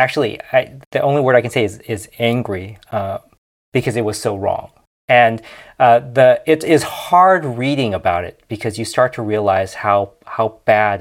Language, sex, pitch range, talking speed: English, male, 100-120 Hz, 185 wpm